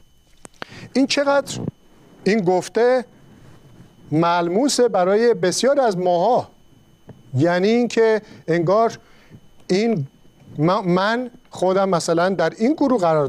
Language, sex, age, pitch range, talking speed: Persian, male, 50-69, 170-225 Hz, 95 wpm